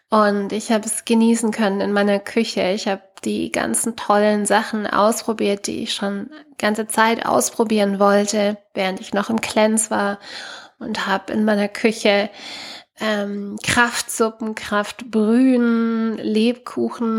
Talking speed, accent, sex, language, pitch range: 135 wpm, German, female, German, 200-235 Hz